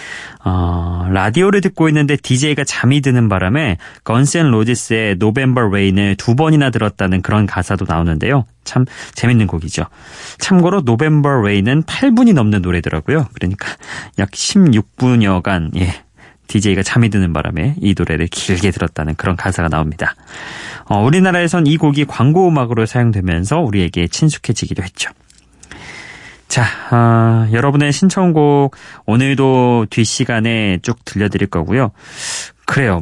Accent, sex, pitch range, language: native, male, 95-145 Hz, Korean